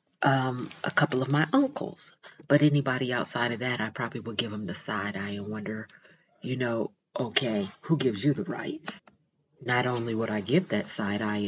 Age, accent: 40-59, American